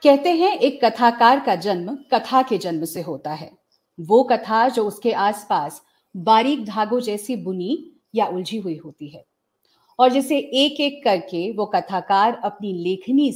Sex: female